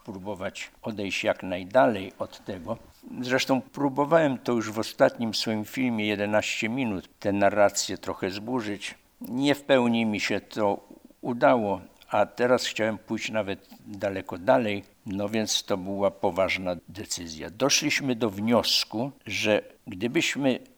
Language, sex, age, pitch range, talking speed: Polish, male, 60-79, 95-120 Hz, 130 wpm